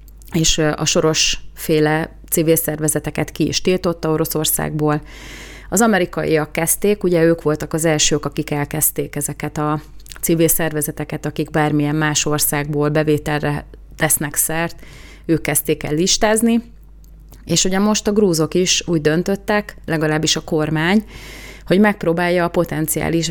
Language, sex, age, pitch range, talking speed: Hungarian, female, 30-49, 150-170 Hz, 125 wpm